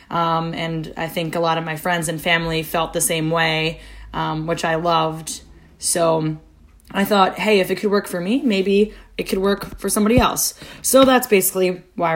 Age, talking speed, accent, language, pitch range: 20-39, 195 wpm, American, English, 170-205 Hz